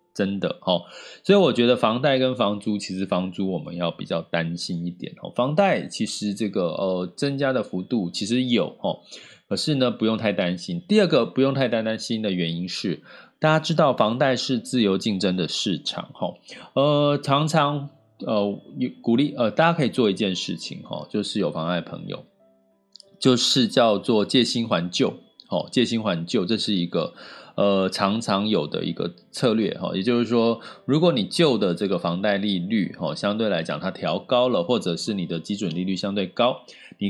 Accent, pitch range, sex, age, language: native, 95-135 Hz, male, 20-39, Chinese